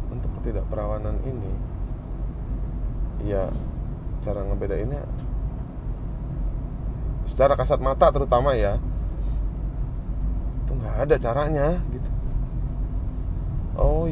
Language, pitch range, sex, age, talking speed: Indonesian, 100-125 Hz, male, 20-39, 75 wpm